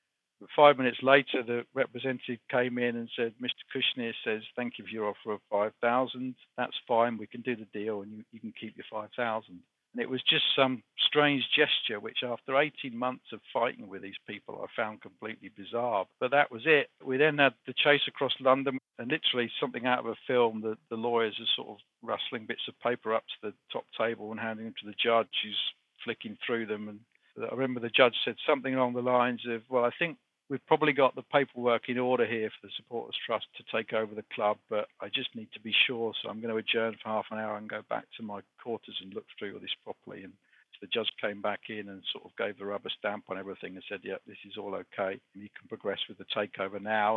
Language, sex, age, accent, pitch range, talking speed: English, male, 50-69, British, 110-130 Hz, 235 wpm